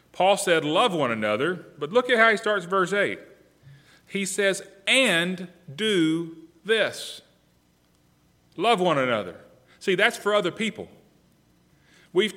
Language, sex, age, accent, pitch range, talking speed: English, male, 30-49, American, 135-190 Hz, 130 wpm